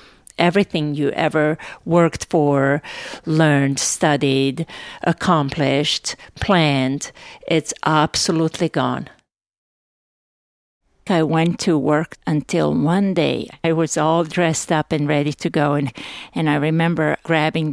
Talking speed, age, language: 110 wpm, 50-69, English